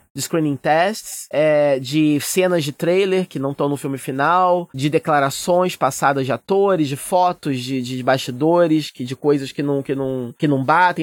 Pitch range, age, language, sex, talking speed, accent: 140-185 Hz, 20-39, Portuguese, male, 185 wpm, Brazilian